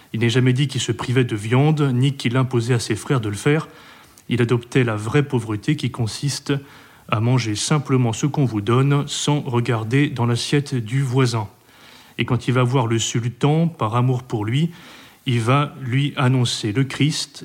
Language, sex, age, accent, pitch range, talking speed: French, male, 30-49, French, 120-140 Hz, 190 wpm